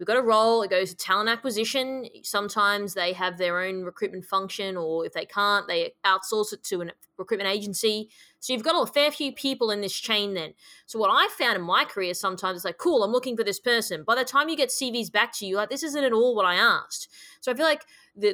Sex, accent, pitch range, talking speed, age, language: female, Australian, 200-255 Hz, 250 wpm, 20-39, English